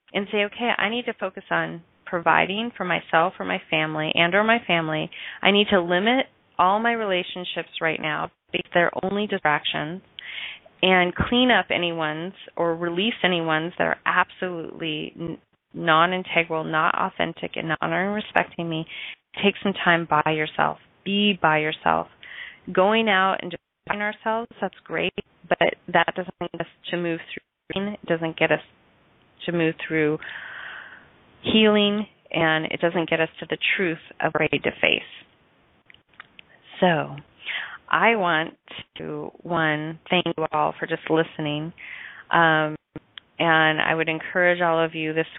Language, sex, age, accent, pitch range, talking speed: English, female, 30-49, American, 160-190 Hz, 150 wpm